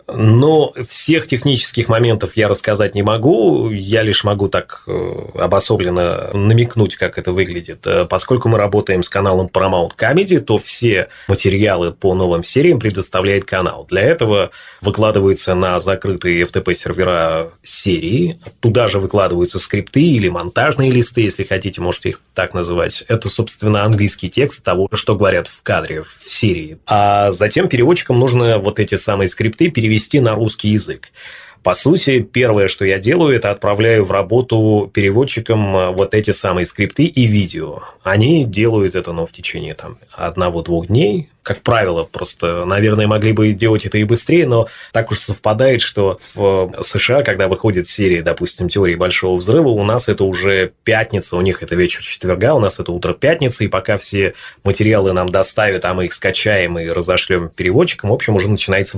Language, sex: Russian, male